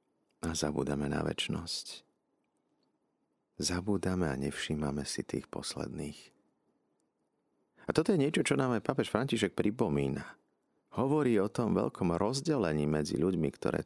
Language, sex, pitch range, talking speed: Slovak, male, 70-95 Hz, 120 wpm